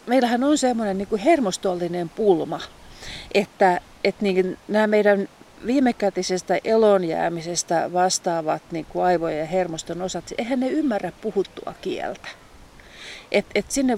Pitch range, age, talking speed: 175-225 Hz, 40-59, 95 wpm